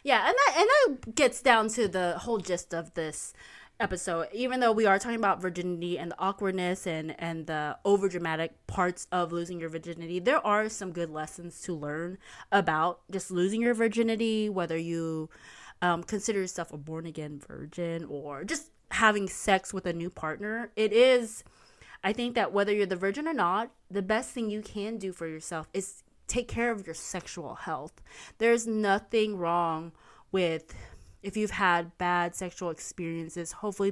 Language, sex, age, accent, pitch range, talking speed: English, female, 20-39, American, 170-210 Hz, 170 wpm